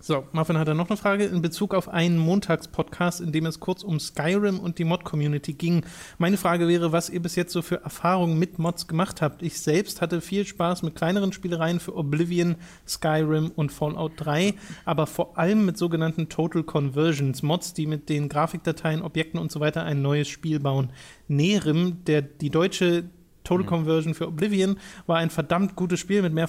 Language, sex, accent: German, male, German